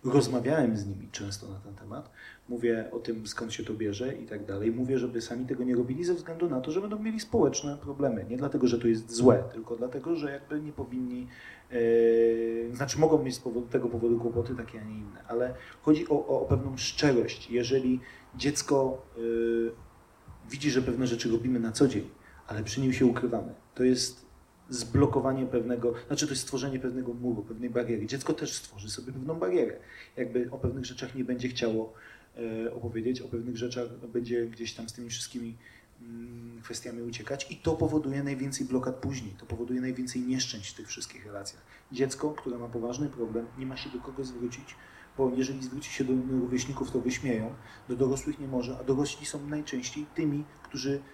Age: 40-59